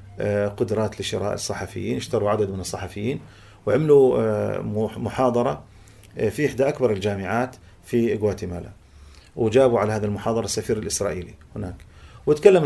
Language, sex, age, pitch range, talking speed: Arabic, male, 40-59, 100-130 Hz, 110 wpm